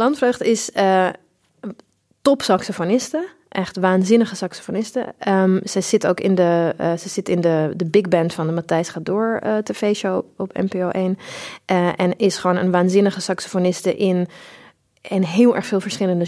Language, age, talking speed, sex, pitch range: English, 30-49, 165 wpm, female, 175-210 Hz